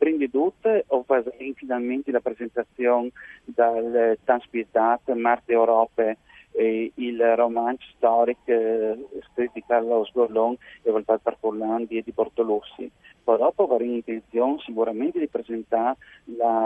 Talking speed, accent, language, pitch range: 130 wpm, native, Italian, 115-135 Hz